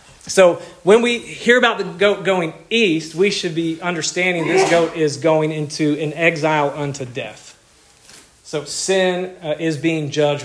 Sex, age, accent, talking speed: male, 40-59, American, 160 wpm